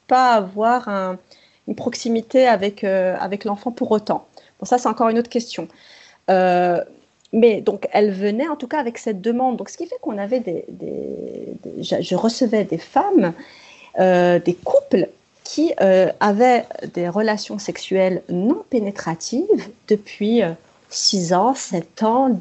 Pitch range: 195-255 Hz